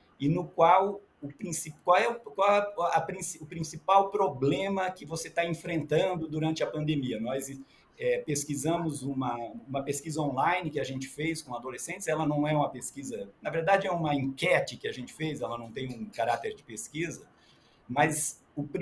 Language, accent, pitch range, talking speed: Portuguese, Brazilian, 140-165 Hz, 180 wpm